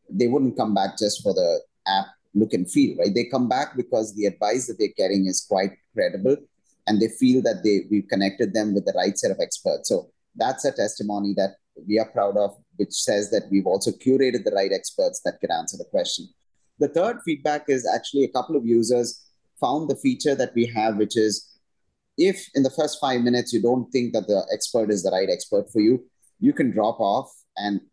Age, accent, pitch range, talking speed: 30-49, Indian, 105-145 Hz, 215 wpm